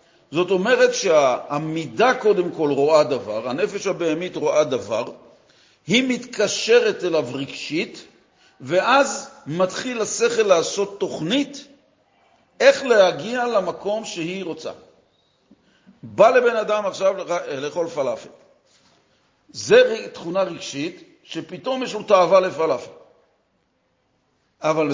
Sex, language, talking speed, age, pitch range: male, Hebrew, 95 wpm, 50-69, 155-250 Hz